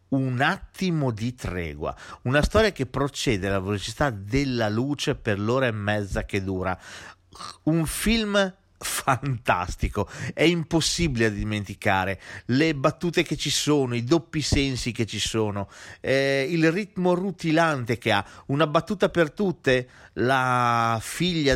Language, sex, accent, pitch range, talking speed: Italian, male, native, 110-145 Hz, 135 wpm